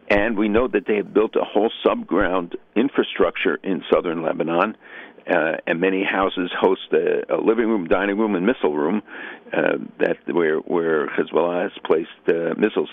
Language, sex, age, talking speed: English, male, 60-79, 170 wpm